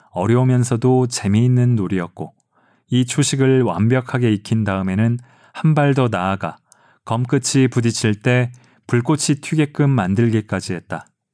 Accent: native